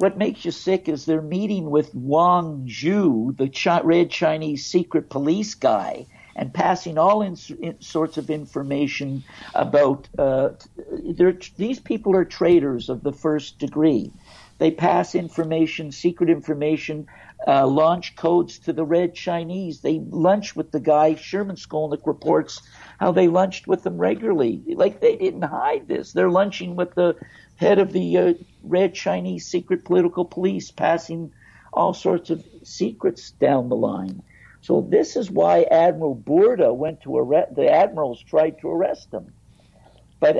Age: 60-79